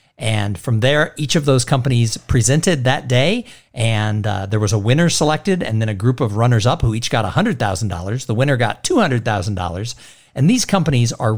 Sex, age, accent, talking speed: male, 50-69, American, 190 wpm